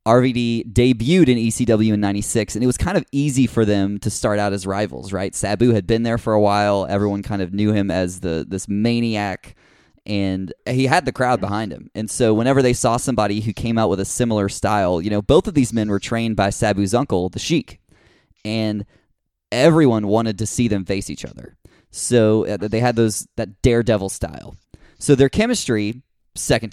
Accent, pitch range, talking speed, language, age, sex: American, 105-125 Hz, 200 wpm, English, 20-39, male